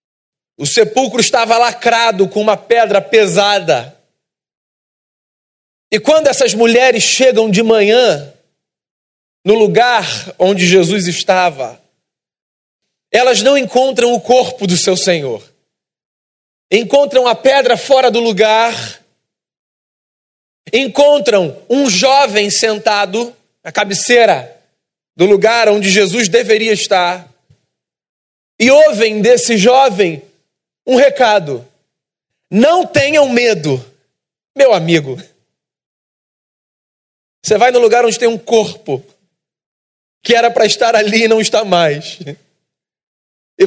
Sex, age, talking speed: male, 40-59, 105 wpm